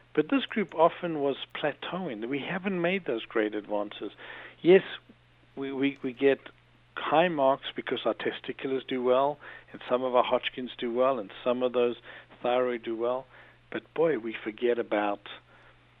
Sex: male